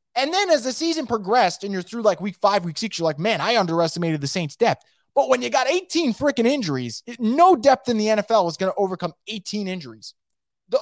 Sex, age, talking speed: male, 20-39, 235 wpm